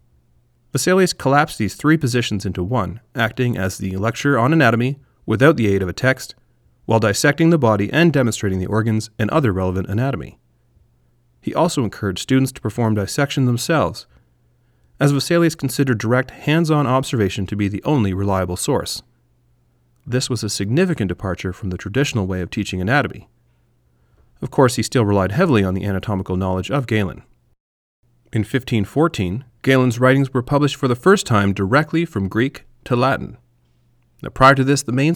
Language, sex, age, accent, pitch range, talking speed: English, male, 30-49, American, 95-135 Hz, 160 wpm